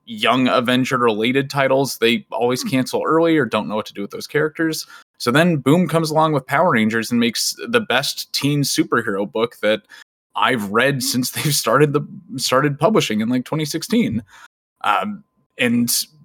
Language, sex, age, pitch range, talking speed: English, male, 20-39, 115-160 Hz, 170 wpm